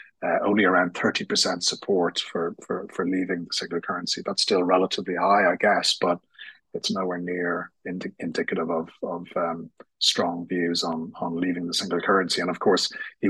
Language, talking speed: English, 175 wpm